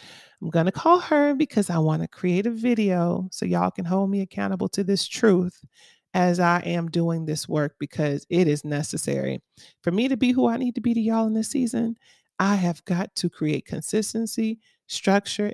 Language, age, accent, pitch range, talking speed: English, 30-49, American, 160-195 Hz, 200 wpm